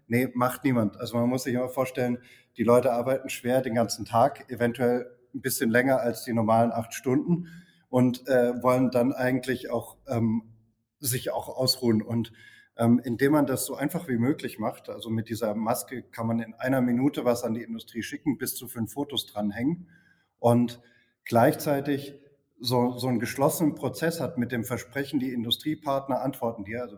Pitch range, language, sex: 115-135 Hz, German, male